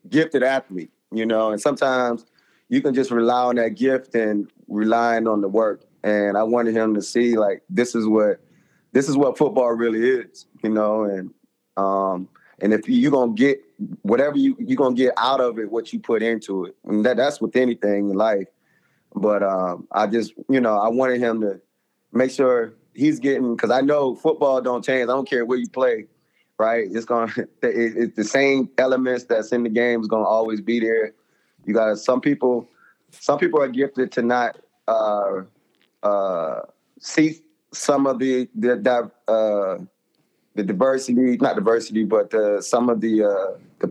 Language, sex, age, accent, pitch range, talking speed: English, male, 20-39, American, 110-130 Hz, 185 wpm